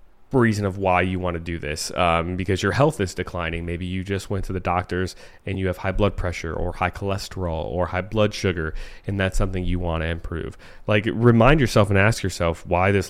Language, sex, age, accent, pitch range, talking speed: English, male, 20-39, American, 90-110 Hz, 225 wpm